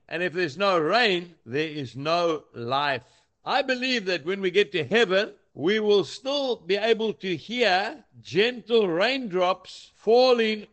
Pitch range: 165-215 Hz